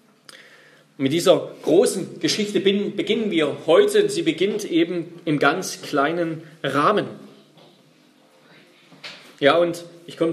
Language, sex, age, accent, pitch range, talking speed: German, male, 40-59, German, 145-215 Hz, 105 wpm